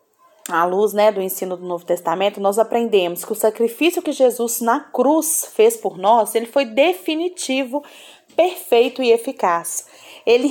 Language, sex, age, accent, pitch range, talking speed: Portuguese, female, 30-49, Brazilian, 210-285 Hz, 155 wpm